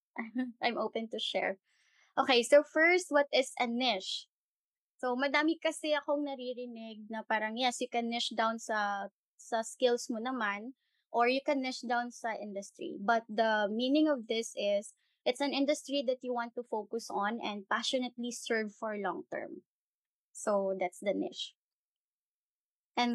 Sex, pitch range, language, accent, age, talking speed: female, 220-260 Hz, English, Filipino, 20-39, 160 wpm